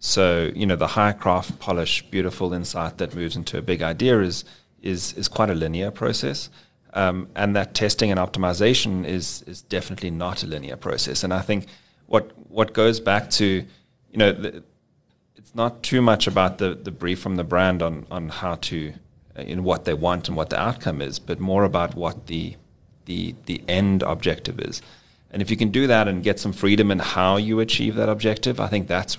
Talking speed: 205 wpm